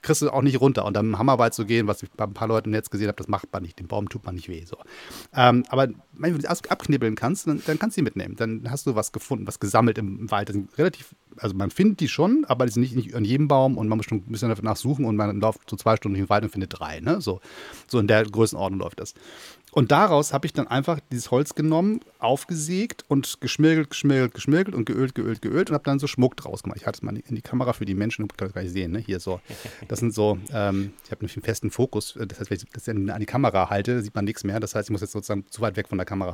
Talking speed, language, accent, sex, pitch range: 285 wpm, German, German, male, 105-140 Hz